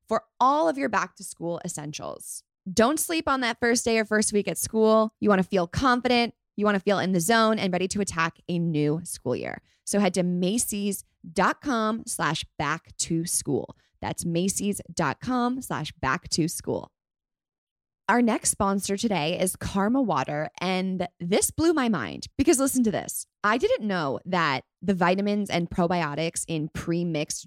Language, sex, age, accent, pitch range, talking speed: English, female, 20-39, American, 175-230 Hz, 175 wpm